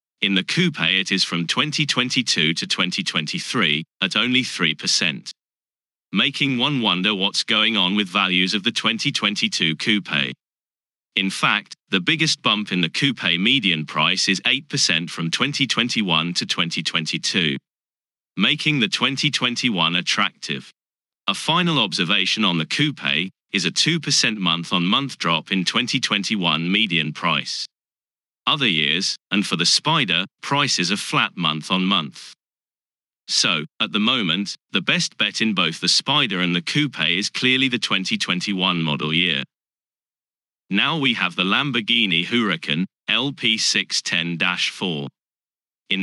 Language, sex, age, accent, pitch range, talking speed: English, male, 30-49, British, 90-130 Hz, 130 wpm